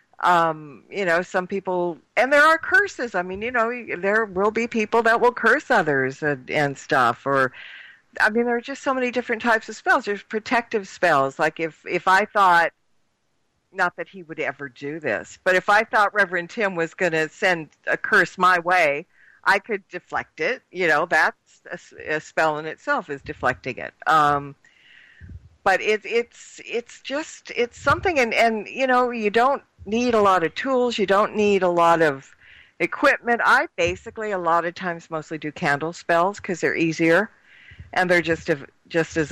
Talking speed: 190 wpm